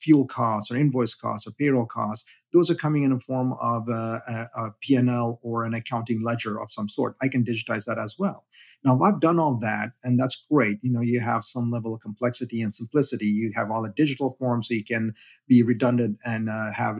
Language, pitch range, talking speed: English, 115-130 Hz, 230 wpm